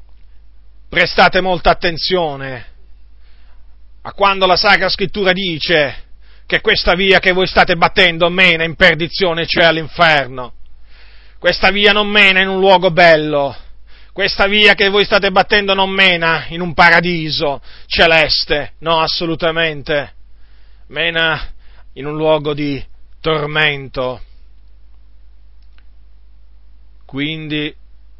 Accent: native